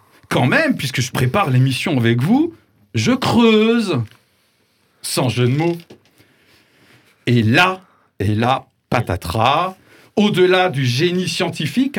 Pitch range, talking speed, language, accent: 120-180 Hz, 115 wpm, French, French